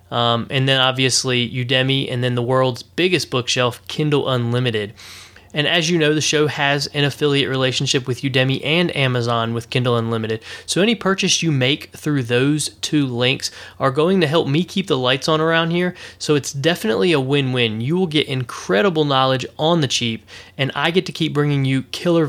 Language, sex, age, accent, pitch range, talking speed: English, male, 20-39, American, 120-155 Hz, 190 wpm